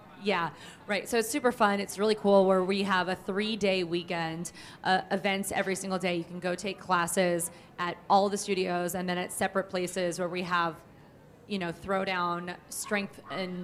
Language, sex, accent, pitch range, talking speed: English, female, American, 180-210 Hz, 190 wpm